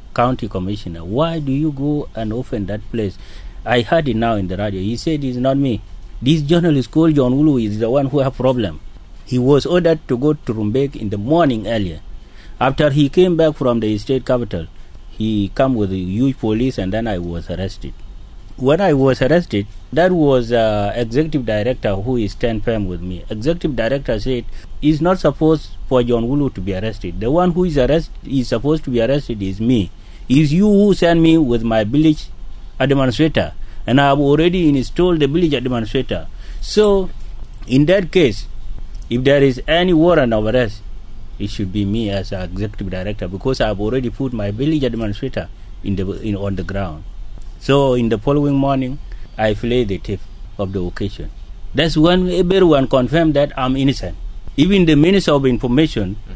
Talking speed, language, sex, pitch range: 185 wpm, English, male, 100-145 Hz